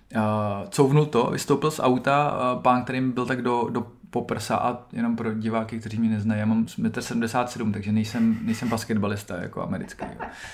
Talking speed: 175 wpm